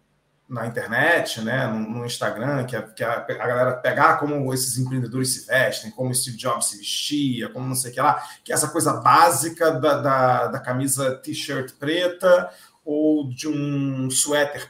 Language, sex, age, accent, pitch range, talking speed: Portuguese, male, 40-59, Brazilian, 130-160 Hz, 180 wpm